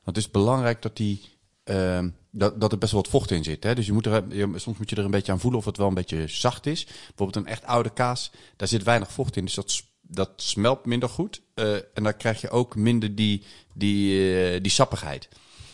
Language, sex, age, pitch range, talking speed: Dutch, male, 40-59, 90-115 Hz, 240 wpm